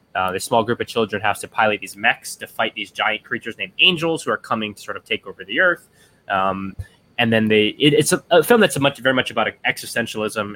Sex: male